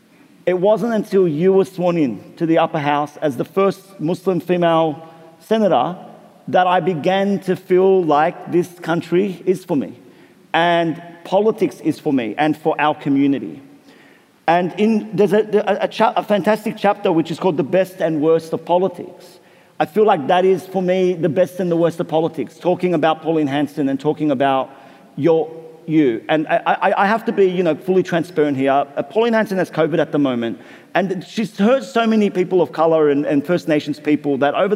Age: 50-69